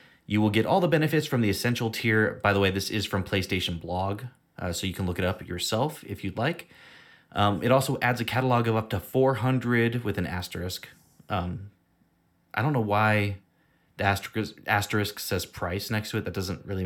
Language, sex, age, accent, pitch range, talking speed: English, male, 30-49, American, 95-120 Hz, 205 wpm